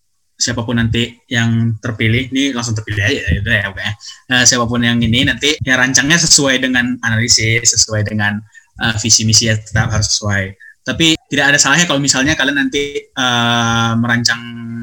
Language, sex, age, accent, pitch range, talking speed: Indonesian, male, 10-29, native, 110-130 Hz, 160 wpm